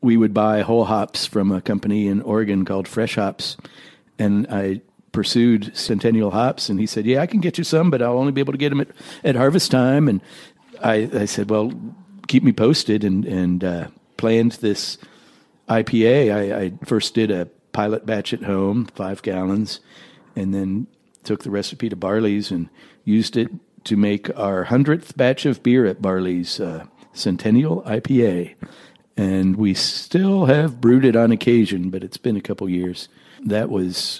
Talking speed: 180 wpm